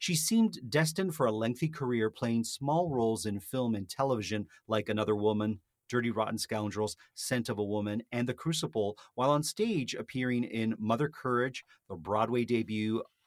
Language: English